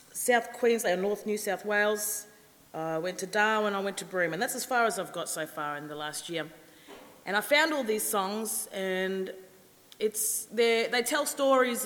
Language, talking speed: English, 195 wpm